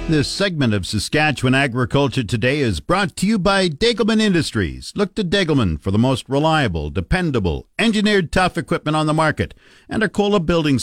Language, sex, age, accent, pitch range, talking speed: English, male, 50-69, American, 115-155 Hz, 165 wpm